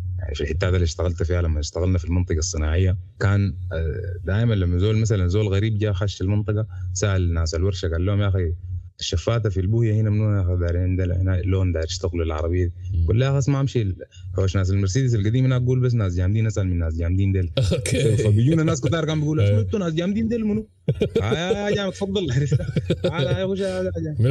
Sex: male